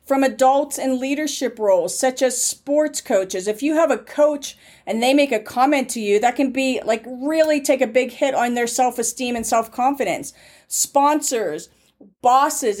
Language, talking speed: English, 175 wpm